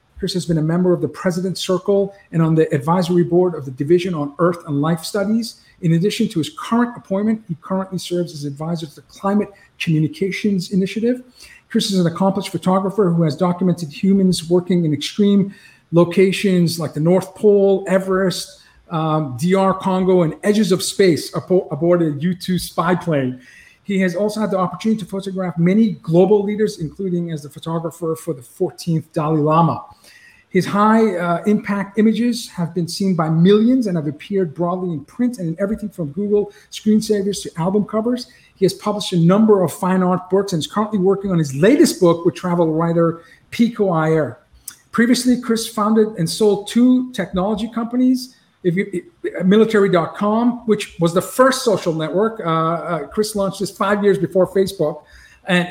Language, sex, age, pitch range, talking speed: English, male, 50-69, 170-205 Hz, 170 wpm